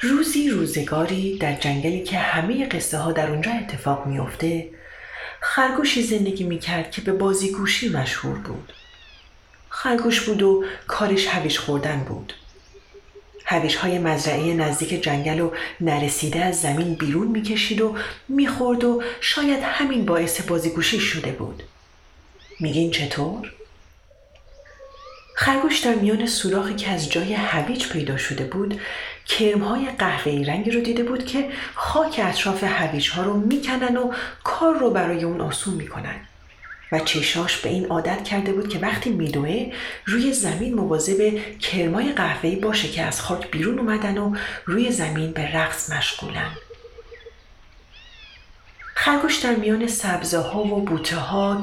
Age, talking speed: 40-59, 135 wpm